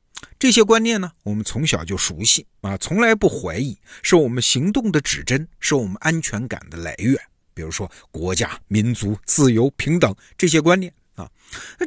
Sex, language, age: male, Chinese, 50-69